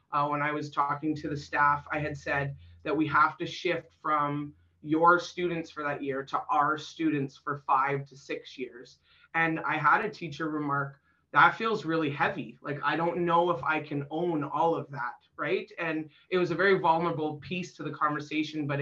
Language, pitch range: English, 145-170 Hz